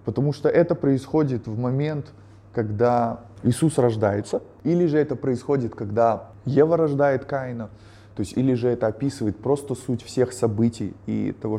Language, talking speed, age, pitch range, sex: Russian, 150 wpm, 20-39, 115-160 Hz, male